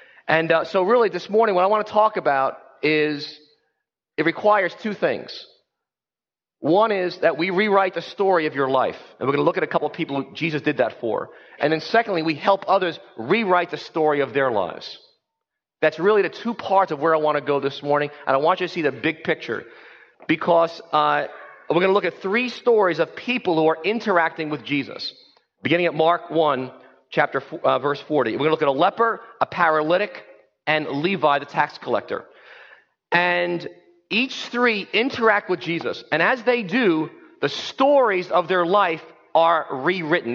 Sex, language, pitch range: male, English, 155-215 Hz